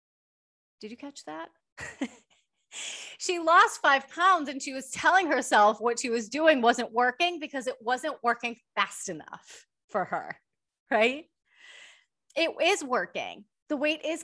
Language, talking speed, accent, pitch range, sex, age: English, 145 wpm, American, 190-270 Hz, female, 30-49